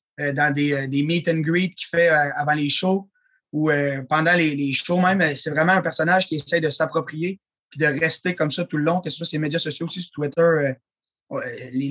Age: 20-39